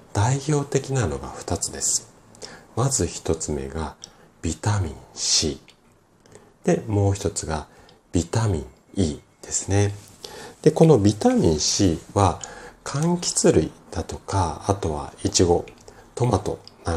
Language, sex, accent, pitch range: Japanese, male, native, 80-115 Hz